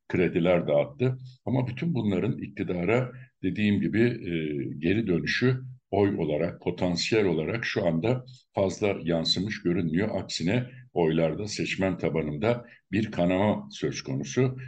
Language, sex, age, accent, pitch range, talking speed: Turkish, male, 60-79, native, 80-115 Hz, 115 wpm